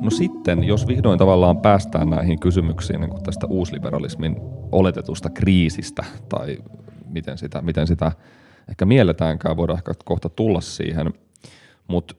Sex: male